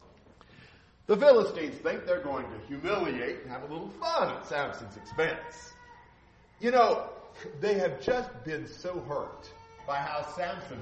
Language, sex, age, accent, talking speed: English, male, 40-59, American, 145 wpm